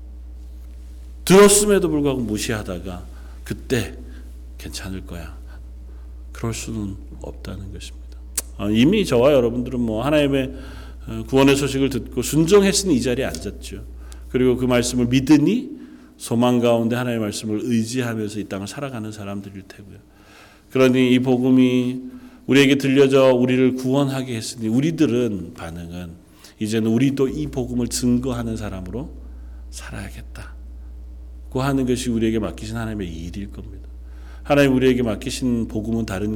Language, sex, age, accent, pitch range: Korean, male, 40-59, native, 90-120 Hz